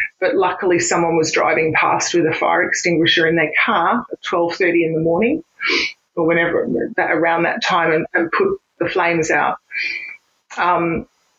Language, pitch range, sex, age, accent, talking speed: English, 165-195 Hz, female, 30-49, Australian, 165 wpm